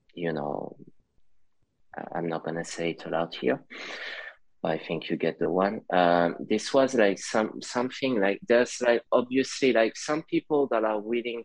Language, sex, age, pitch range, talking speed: English, male, 20-39, 85-110 Hz, 170 wpm